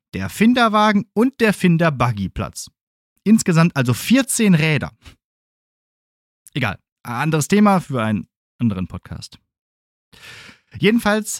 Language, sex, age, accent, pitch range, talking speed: German, male, 30-49, German, 115-190 Hz, 90 wpm